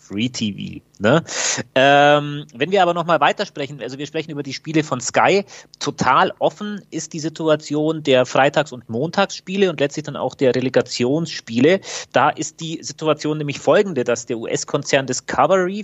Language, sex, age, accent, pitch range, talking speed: German, male, 30-49, German, 125-155 Hz, 150 wpm